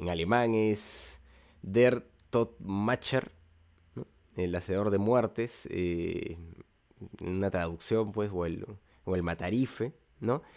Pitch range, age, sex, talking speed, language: 90-115 Hz, 30-49, male, 115 wpm, Spanish